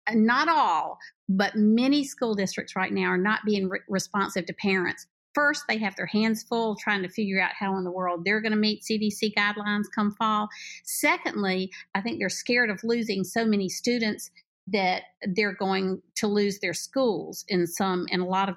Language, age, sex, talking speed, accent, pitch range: English, 50-69, female, 190 wpm, American, 180-220 Hz